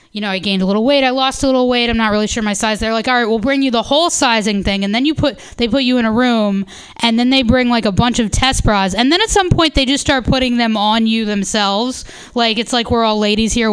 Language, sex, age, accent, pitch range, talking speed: English, female, 10-29, American, 215-270 Hz, 300 wpm